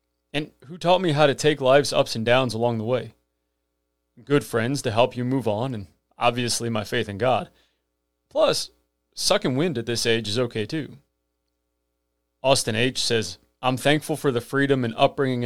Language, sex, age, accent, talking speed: English, male, 30-49, American, 180 wpm